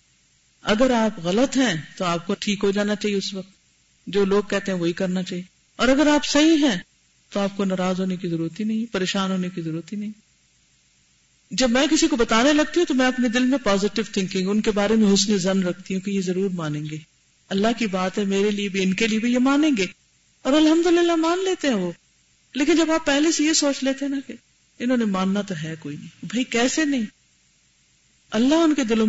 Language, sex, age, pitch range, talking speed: Urdu, female, 50-69, 185-265 Hz, 225 wpm